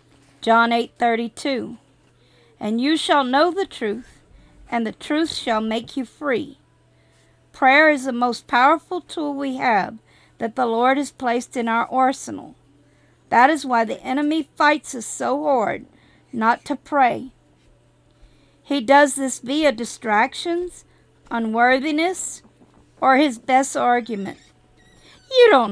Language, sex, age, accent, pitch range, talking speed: English, female, 50-69, American, 235-295 Hz, 130 wpm